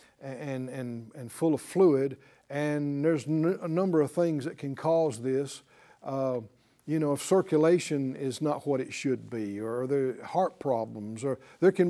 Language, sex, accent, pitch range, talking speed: English, male, American, 135-175 Hz, 175 wpm